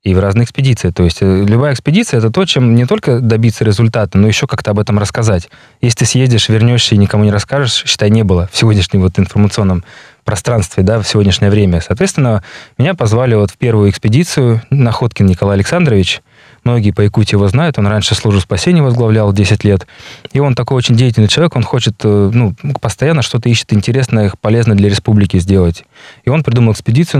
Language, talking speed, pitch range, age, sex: Russian, 185 wpm, 100-125 Hz, 20-39, male